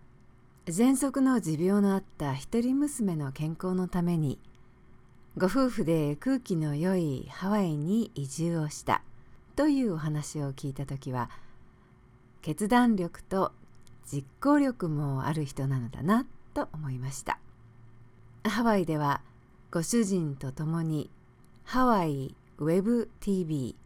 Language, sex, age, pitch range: English, female, 50-69, 130-215 Hz